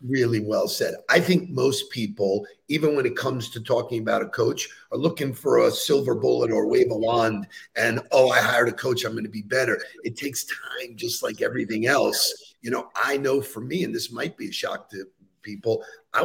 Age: 50-69